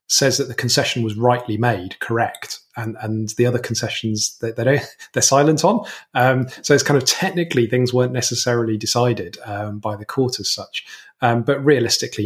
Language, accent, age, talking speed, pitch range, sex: English, British, 20-39, 180 wpm, 110-135 Hz, male